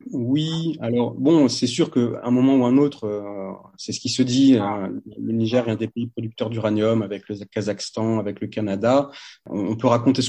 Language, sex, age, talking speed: French, male, 30-49, 215 wpm